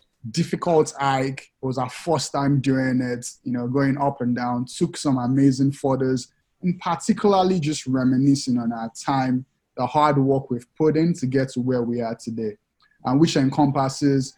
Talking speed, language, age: 175 wpm, English, 20-39